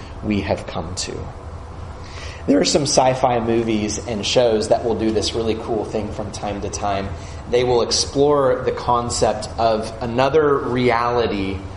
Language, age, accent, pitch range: English, 30-49, American, 100-135 Hz